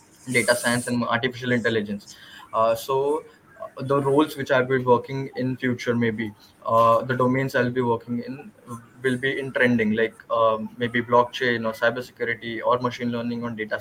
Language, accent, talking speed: Hindi, native, 175 wpm